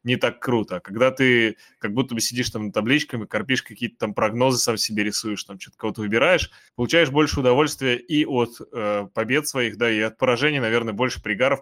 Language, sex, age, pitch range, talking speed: Russian, male, 20-39, 105-130 Hz, 200 wpm